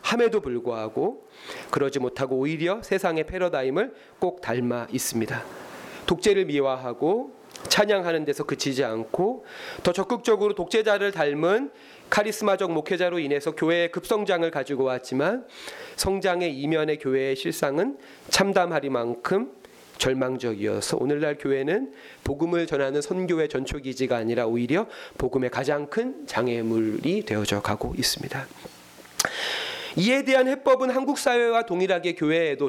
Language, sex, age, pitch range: Korean, male, 30-49, 130-210 Hz